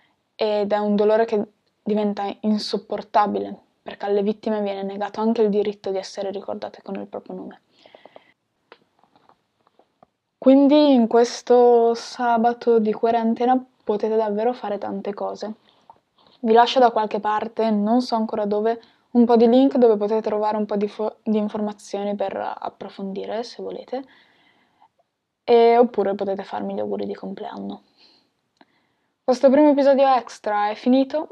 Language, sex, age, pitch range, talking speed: Italian, female, 10-29, 205-240 Hz, 140 wpm